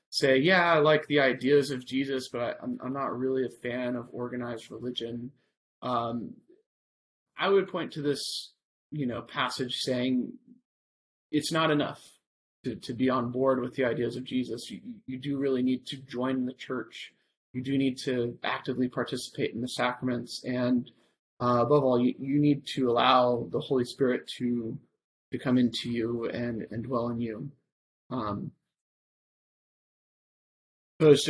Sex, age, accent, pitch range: male, 30-49, American, 120-140 Hz